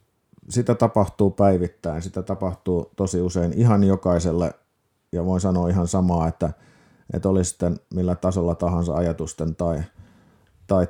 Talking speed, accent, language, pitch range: 125 wpm, native, Finnish, 90-105 Hz